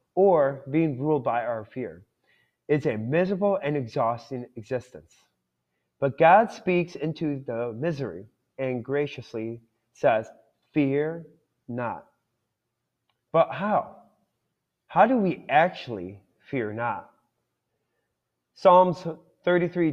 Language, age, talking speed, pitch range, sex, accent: English, 30-49, 100 wpm, 120-165 Hz, male, American